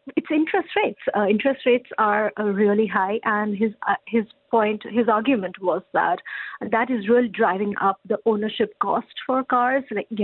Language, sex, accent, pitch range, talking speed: English, female, Indian, 205-245 Hz, 175 wpm